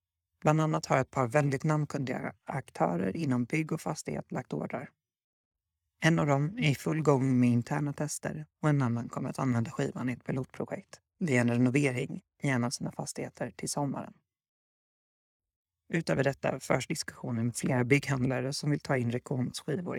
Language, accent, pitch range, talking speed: Swedish, native, 120-150 Hz, 165 wpm